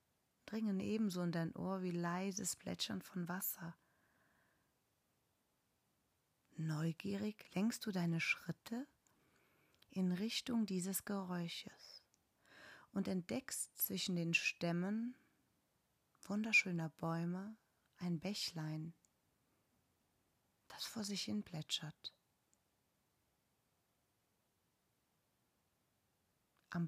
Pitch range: 165-205 Hz